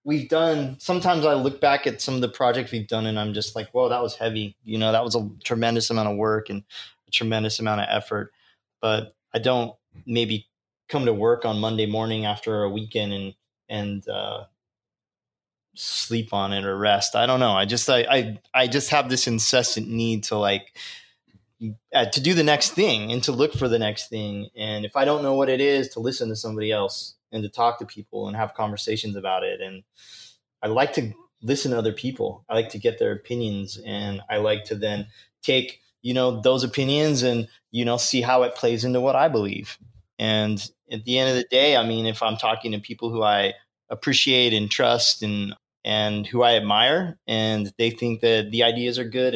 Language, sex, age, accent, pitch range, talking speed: English, male, 20-39, American, 105-125 Hz, 215 wpm